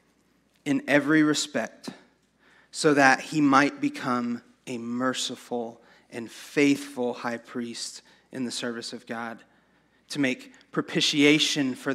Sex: male